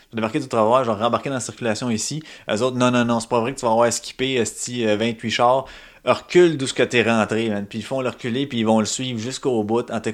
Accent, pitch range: Canadian, 95-125 Hz